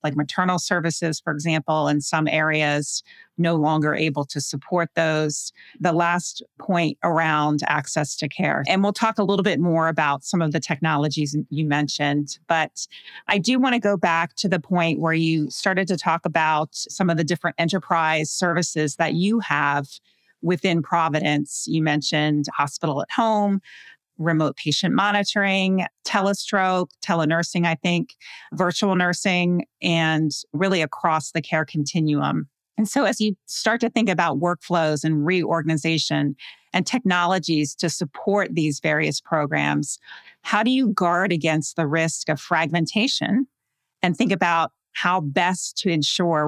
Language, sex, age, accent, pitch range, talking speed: English, female, 30-49, American, 155-185 Hz, 150 wpm